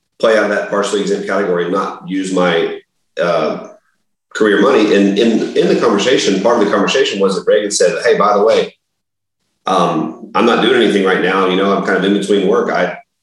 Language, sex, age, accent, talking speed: English, male, 30-49, American, 215 wpm